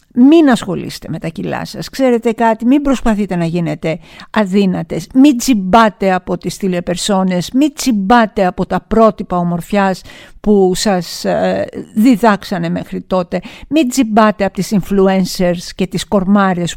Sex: female